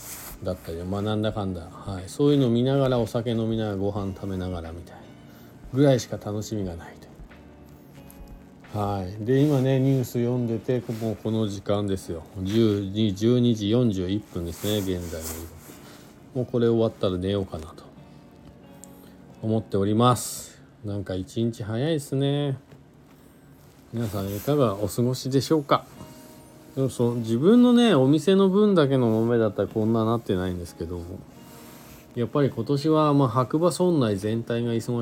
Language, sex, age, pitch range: Japanese, male, 40-59, 90-125 Hz